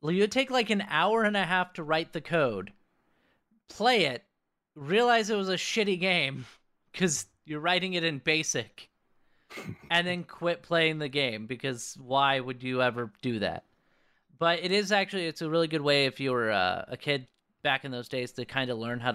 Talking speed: 195 wpm